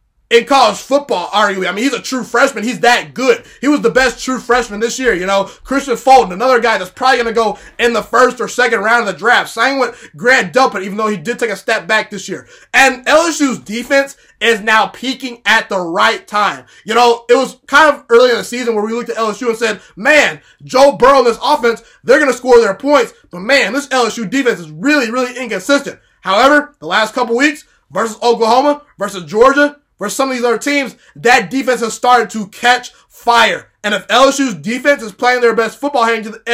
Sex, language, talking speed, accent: male, English, 220 wpm, American